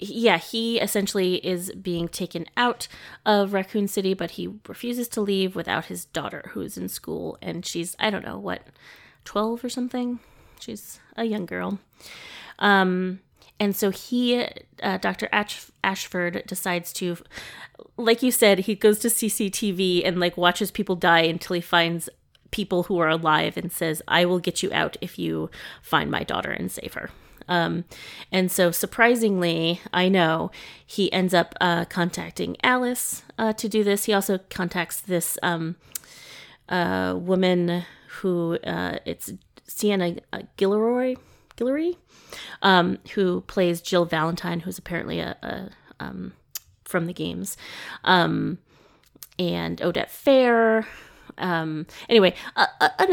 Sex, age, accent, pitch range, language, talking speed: female, 30-49, American, 175-215 Hz, English, 145 wpm